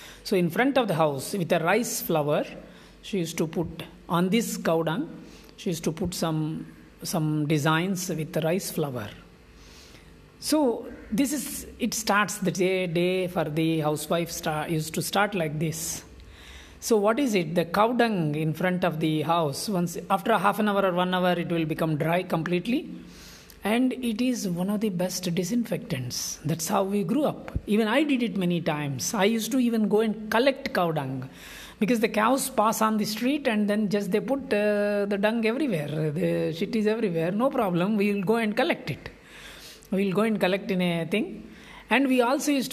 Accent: Indian